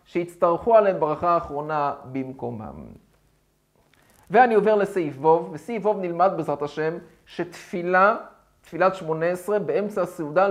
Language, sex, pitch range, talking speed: Hebrew, male, 170-230 Hz, 115 wpm